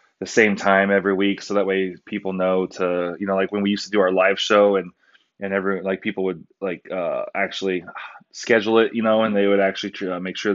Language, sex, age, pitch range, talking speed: English, male, 20-39, 105-150 Hz, 240 wpm